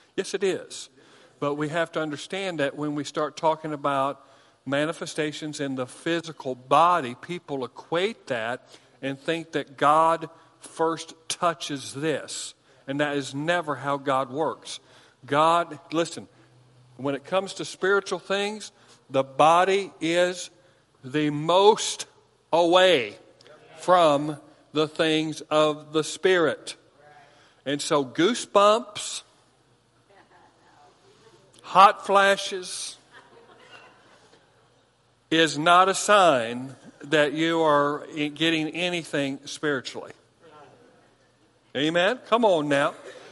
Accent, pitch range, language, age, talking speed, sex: American, 140-170 Hz, English, 50-69, 100 wpm, male